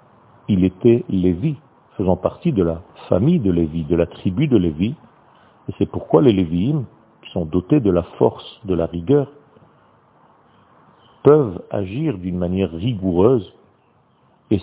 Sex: male